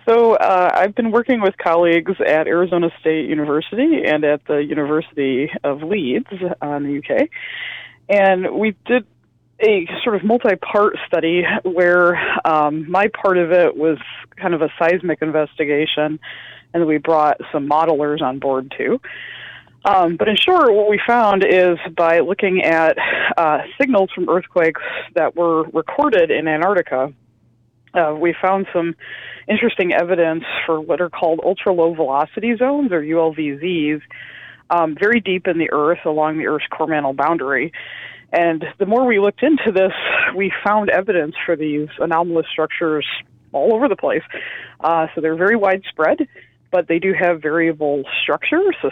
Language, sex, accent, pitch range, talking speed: English, female, American, 155-200 Hz, 150 wpm